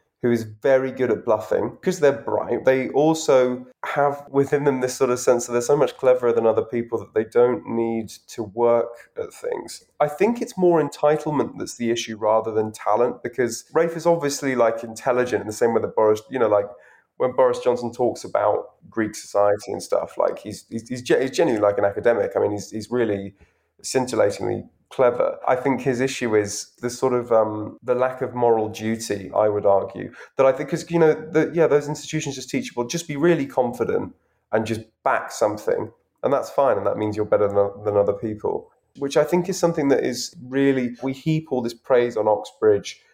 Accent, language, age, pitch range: British, English, 20-39, 110-150 Hz